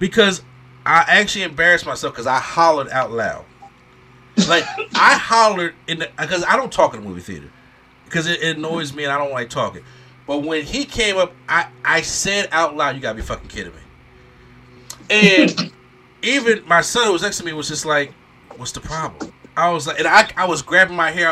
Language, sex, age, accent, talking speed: English, male, 30-49, American, 210 wpm